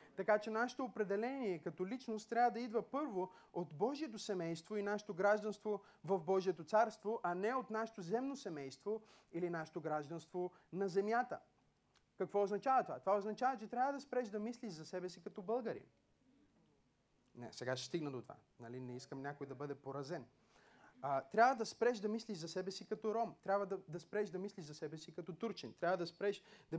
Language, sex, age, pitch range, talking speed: Bulgarian, male, 30-49, 180-225 Hz, 190 wpm